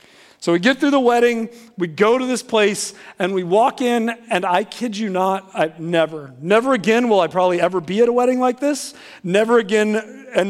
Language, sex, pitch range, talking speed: English, male, 180-240 Hz, 210 wpm